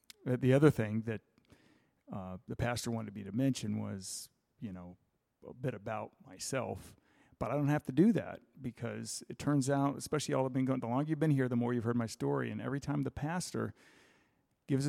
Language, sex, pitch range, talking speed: English, male, 120-150 Hz, 205 wpm